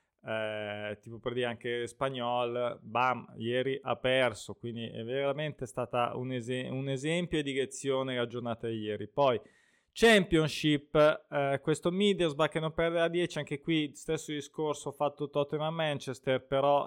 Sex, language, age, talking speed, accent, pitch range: male, Italian, 20-39, 155 wpm, native, 120-145 Hz